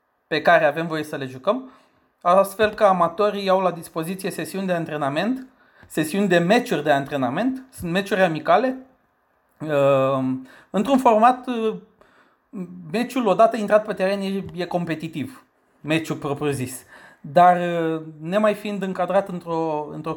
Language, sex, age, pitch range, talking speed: Romanian, male, 30-49, 150-195 Hz, 120 wpm